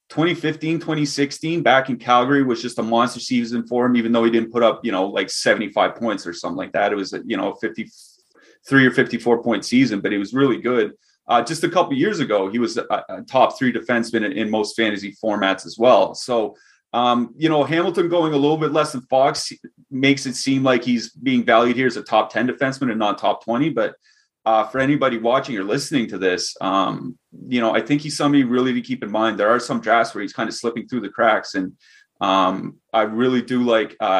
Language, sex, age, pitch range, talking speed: English, male, 30-49, 110-135 Hz, 225 wpm